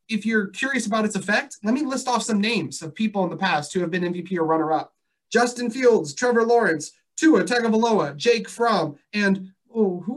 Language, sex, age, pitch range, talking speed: English, male, 30-49, 180-225 Hz, 200 wpm